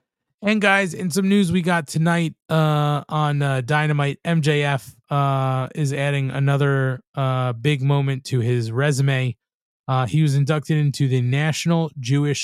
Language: English